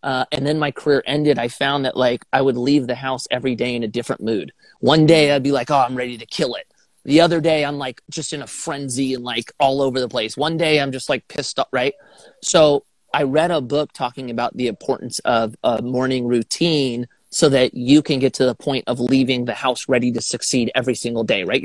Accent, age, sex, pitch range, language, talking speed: American, 30-49, male, 125-150 Hz, English, 240 wpm